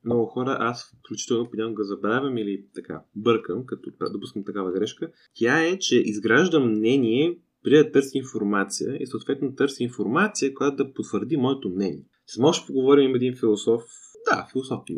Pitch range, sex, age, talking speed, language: 110-140 Hz, male, 20-39, 160 wpm, Bulgarian